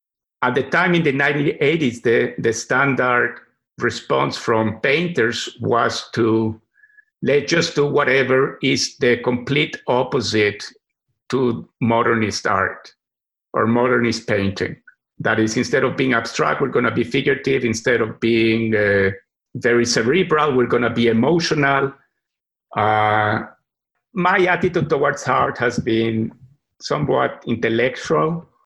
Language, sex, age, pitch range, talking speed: English, male, 50-69, 110-140 Hz, 125 wpm